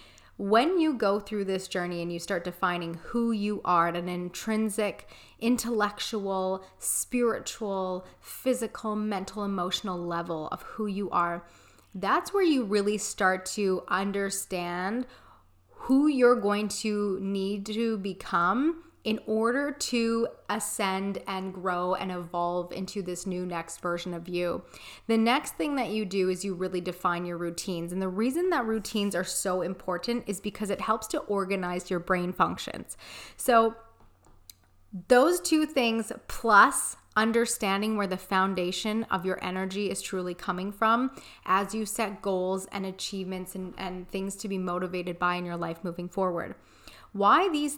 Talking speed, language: 150 wpm, English